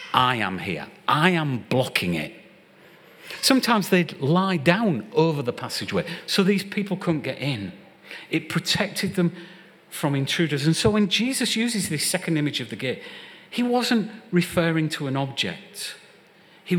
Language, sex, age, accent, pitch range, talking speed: English, male, 40-59, British, 135-195 Hz, 155 wpm